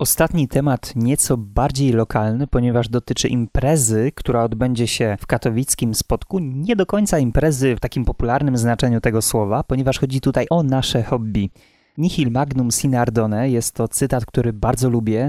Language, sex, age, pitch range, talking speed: Polish, male, 20-39, 115-140 Hz, 155 wpm